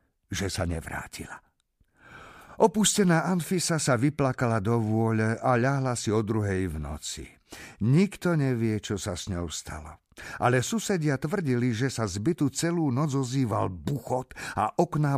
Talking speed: 140 wpm